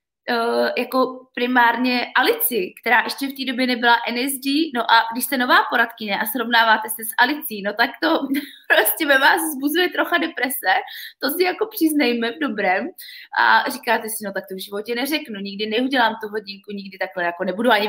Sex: female